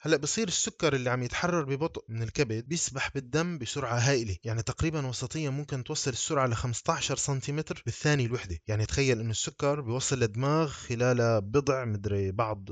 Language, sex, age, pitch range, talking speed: Arabic, male, 20-39, 110-145 Hz, 160 wpm